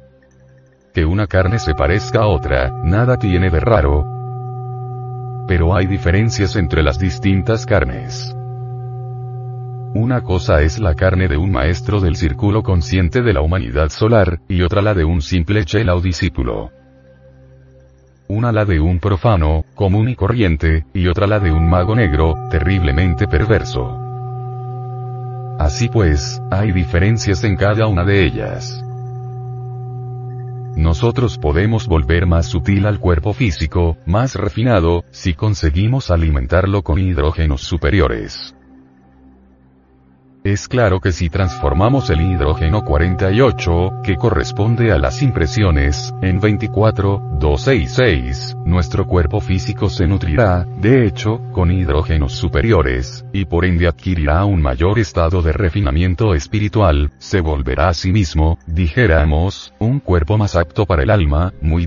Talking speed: 130 wpm